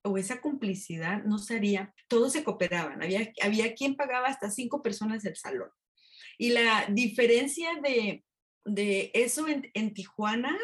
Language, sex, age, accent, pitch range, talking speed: English, female, 30-49, Mexican, 200-255 Hz, 150 wpm